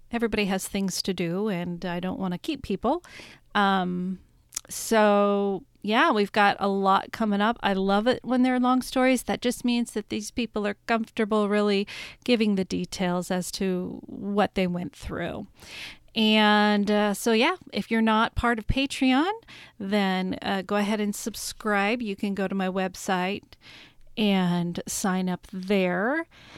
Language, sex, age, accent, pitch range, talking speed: English, female, 40-59, American, 195-230 Hz, 165 wpm